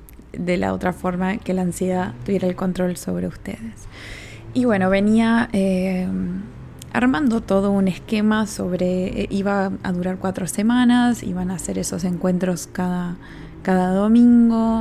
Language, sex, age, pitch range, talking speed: Spanish, female, 20-39, 180-205 Hz, 140 wpm